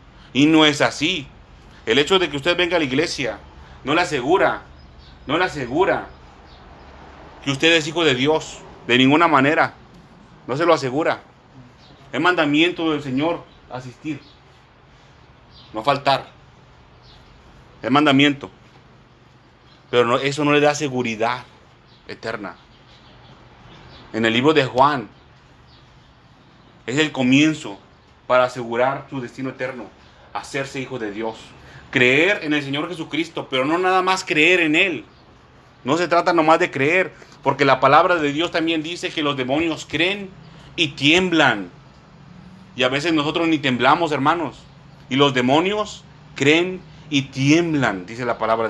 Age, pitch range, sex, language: 40-59, 125-160 Hz, male, Spanish